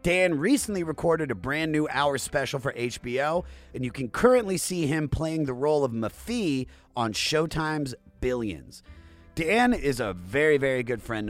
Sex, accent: male, American